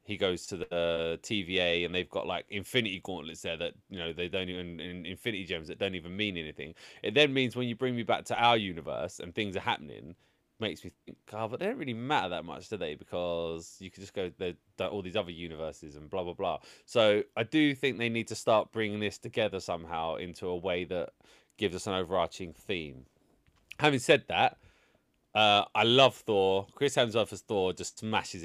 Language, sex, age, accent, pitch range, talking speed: English, male, 20-39, British, 90-110 Hz, 215 wpm